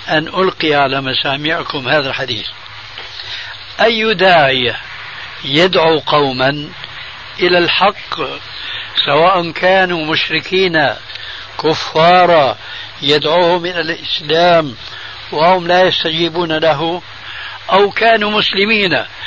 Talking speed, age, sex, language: 80 wpm, 60-79, male, Arabic